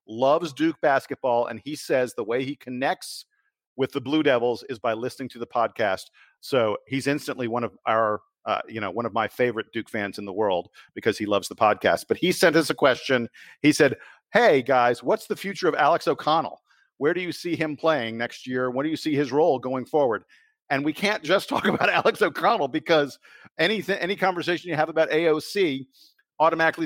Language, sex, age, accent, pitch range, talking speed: English, male, 50-69, American, 120-155 Hz, 205 wpm